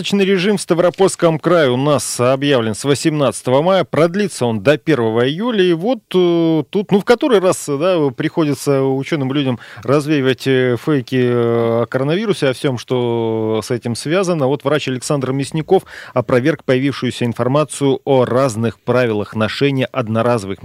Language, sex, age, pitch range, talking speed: Russian, male, 30-49, 115-155 Hz, 140 wpm